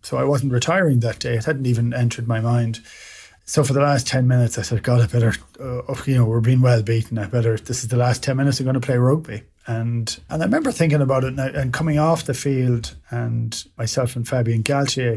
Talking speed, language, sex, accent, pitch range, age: 245 wpm, English, male, Irish, 115-135 Hz, 30-49